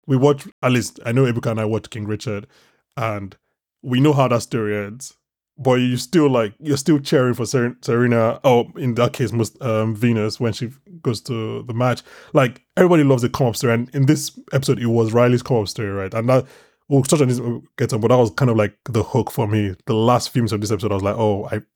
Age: 20-39